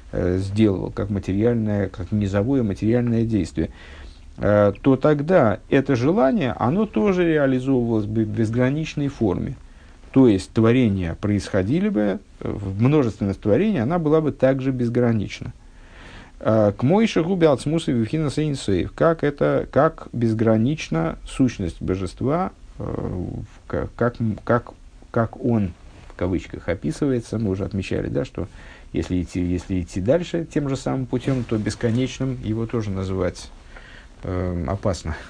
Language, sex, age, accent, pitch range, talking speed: Russian, male, 50-69, native, 95-125 Hz, 115 wpm